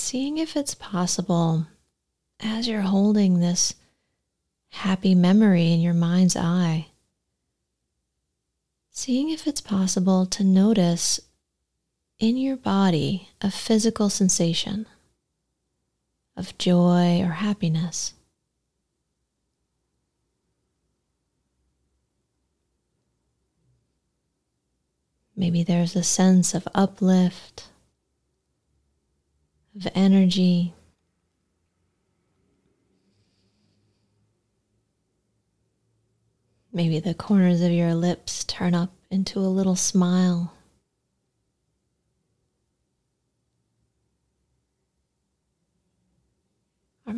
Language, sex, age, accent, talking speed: English, female, 30-49, American, 65 wpm